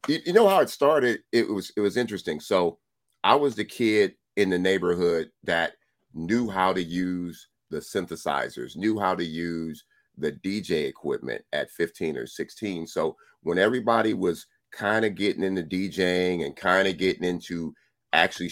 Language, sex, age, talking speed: English, male, 40-59, 165 wpm